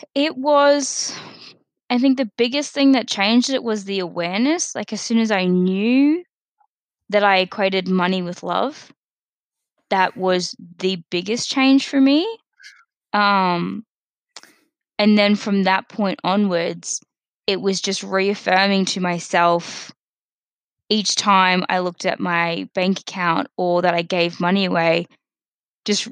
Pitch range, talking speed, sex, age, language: 180-220 Hz, 140 wpm, female, 10-29, English